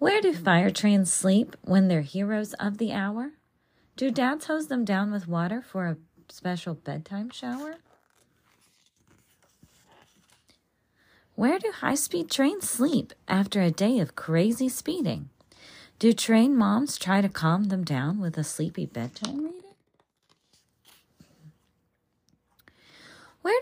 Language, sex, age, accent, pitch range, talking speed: English, female, 30-49, American, 170-250 Hz, 120 wpm